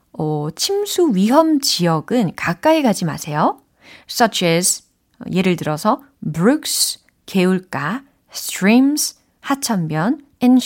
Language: Korean